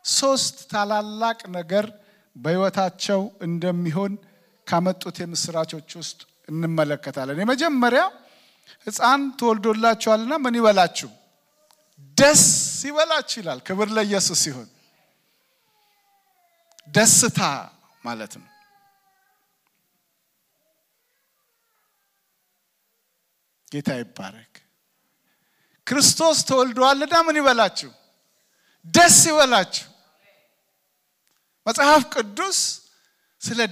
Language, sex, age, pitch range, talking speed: English, male, 50-69, 195-320 Hz, 45 wpm